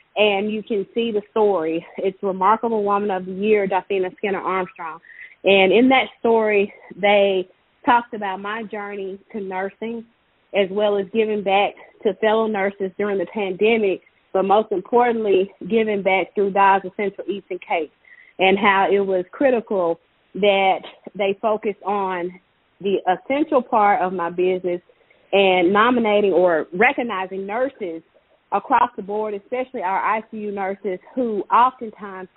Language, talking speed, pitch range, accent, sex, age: English, 145 wpm, 190-225 Hz, American, female, 30-49